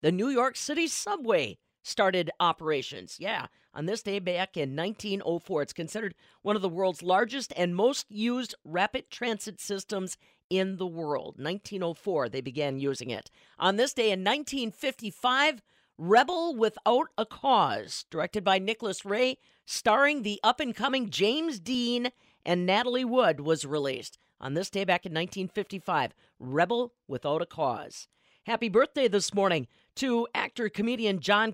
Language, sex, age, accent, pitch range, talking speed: English, female, 40-59, American, 180-240 Hz, 145 wpm